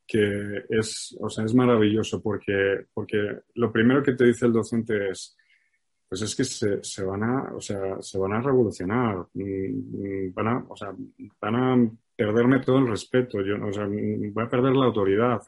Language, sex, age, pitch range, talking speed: Spanish, male, 30-49, 105-125 Hz, 180 wpm